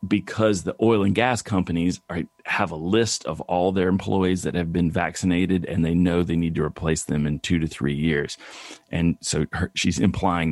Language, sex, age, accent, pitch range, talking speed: English, male, 40-59, American, 90-120 Hz, 200 wpm